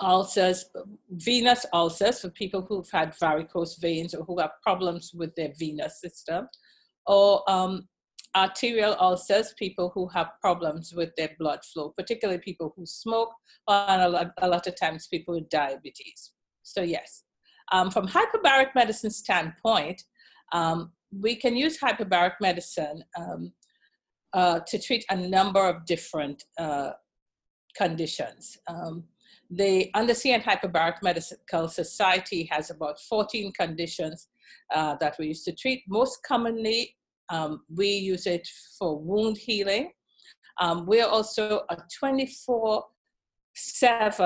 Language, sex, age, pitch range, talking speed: English, female, 50-69, 170-215 Hz, 130 wpm